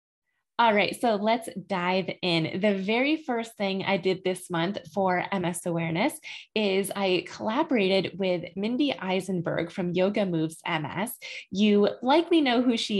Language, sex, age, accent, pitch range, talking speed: English, female, 20-39, American, 175-225 Hz, 150 wpm